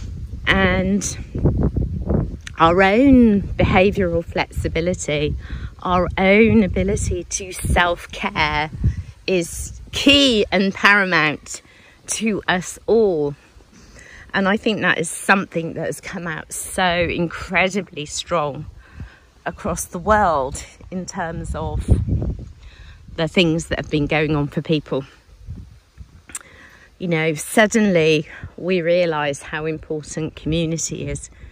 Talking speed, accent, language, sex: 105 wpm, British, English, female